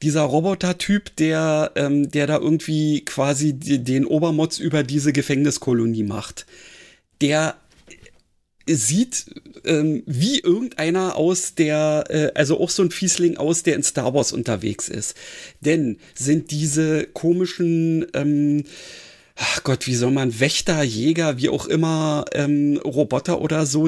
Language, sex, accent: German, male, German